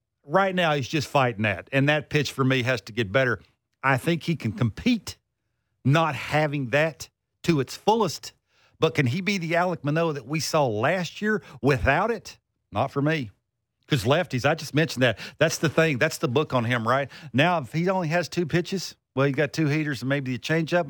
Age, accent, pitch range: 50-69, American, 130-180 Hz